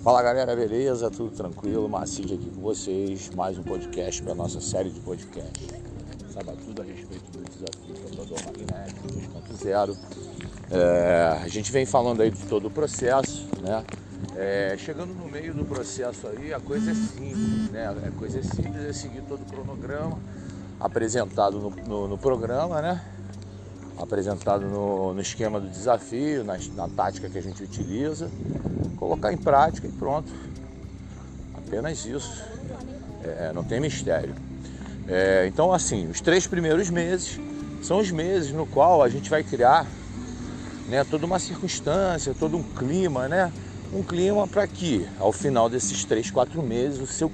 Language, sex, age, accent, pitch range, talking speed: Portuguese, male, 50-69, Brazilian, 95-130 Hz, 160 wpm